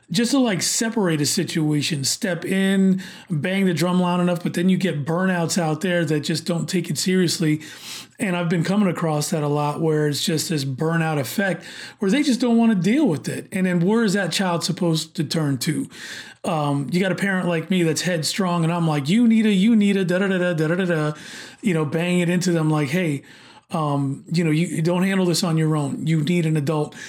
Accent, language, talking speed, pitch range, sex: American, English, 220 wpm, 160-200 Hz, male